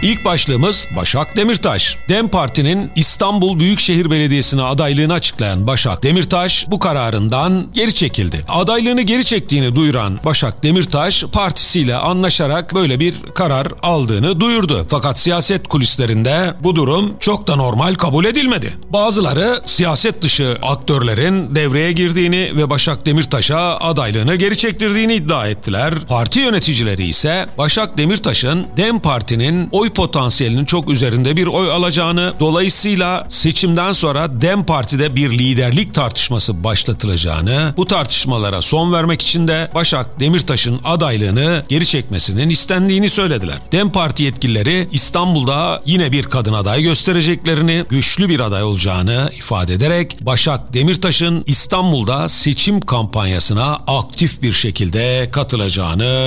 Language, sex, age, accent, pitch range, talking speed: Turkish, male, 40-59, native, 130-180 Hz, 120 wpm